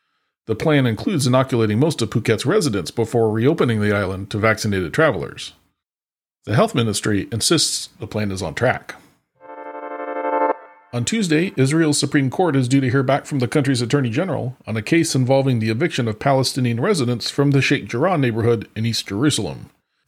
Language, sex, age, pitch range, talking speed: English, male, 40-59, 105-135 Hz, 165 wpm